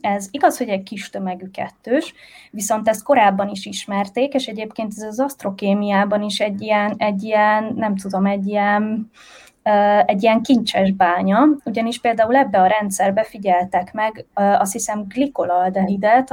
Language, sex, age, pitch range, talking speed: Hungarian, female, 20-39, 195-235 Hz, 155 wpm